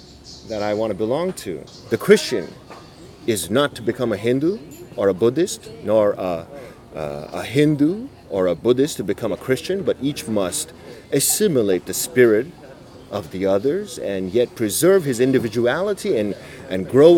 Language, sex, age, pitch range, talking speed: English, male, 30-49, 100-140 Hz, 155 wpm